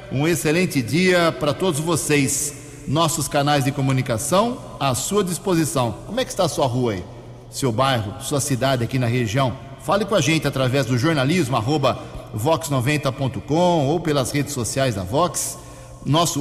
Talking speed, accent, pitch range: 155 wpm, Brazilian, 130-160 Hz